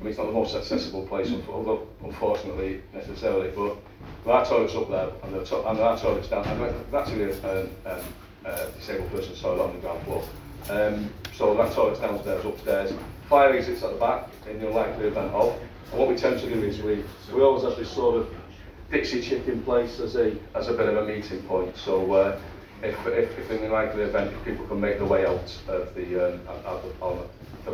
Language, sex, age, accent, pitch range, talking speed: English, male, 40-59, British, 95-125 Hz, 210 wpm